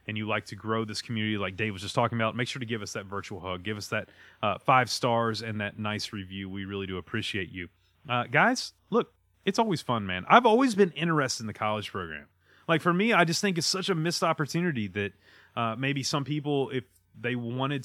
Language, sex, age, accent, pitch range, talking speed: English, male, 30-49, American, 105-135 Hz, 235 wpm